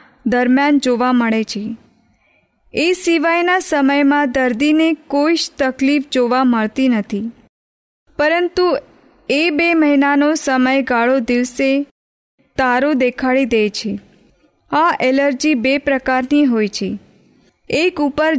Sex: female